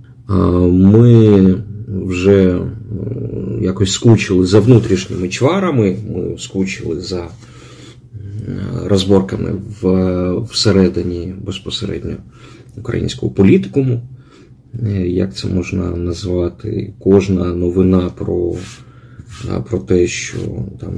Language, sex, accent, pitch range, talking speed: Ukrainian, male, native, 90-115 Hz, 75 wpm